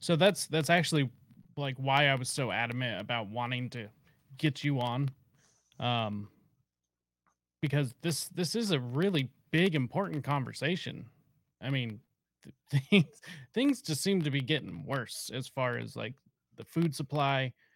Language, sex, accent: English, male, American